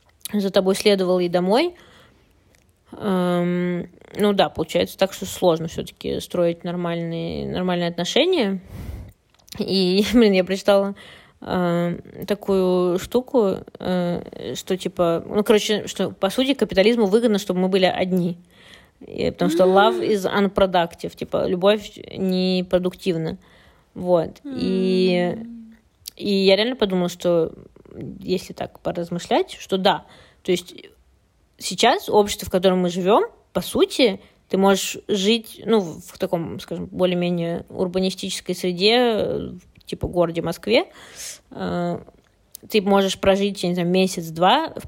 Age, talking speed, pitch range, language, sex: 20-39, 120 wpm, 175-205 Hz, Russian, female